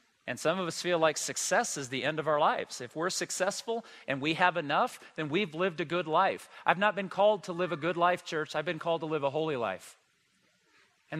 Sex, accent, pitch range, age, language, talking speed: male, American, 150-190 Hz, 40-59, English, 240 wpm